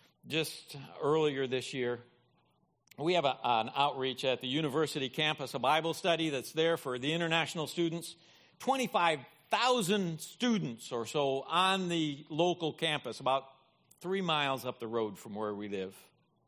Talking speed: 140 wpm